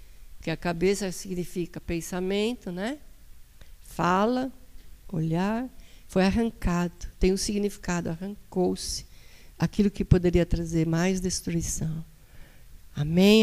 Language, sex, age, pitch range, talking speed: Portuguese, female, 50-69, 170-220 Hz, 95 wpm